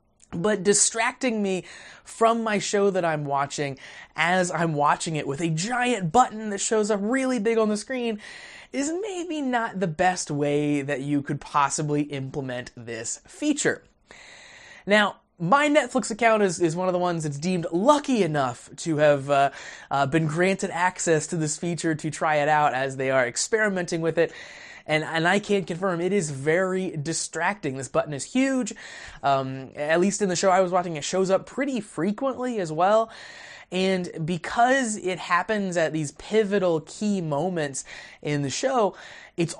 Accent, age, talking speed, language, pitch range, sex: American, 20-39, 175 wpm, English, 150-205 Hz, male